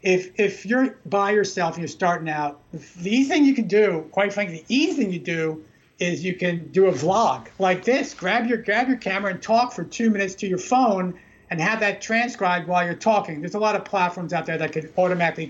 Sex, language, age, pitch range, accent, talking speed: male, English, 50-69, 165-205 Hz, American, 230 wpm